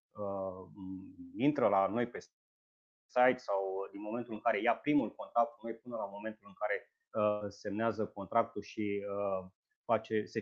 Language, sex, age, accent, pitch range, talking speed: Romanian, male, 30-49, native, 110-155 Hz, 160 wpm